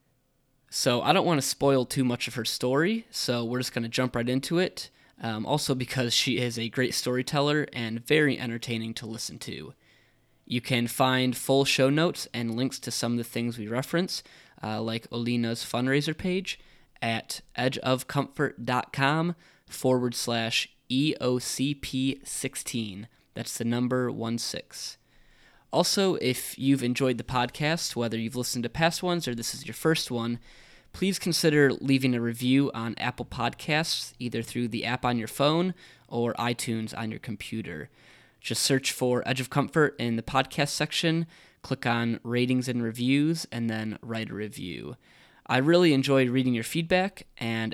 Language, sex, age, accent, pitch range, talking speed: English, male, 20-39, American, 115-140 Hz, 160 wpm